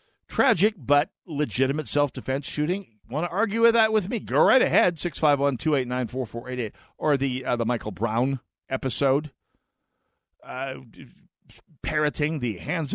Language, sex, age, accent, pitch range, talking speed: English, male, 50-69, American, 115-155 Hz, 130 wpm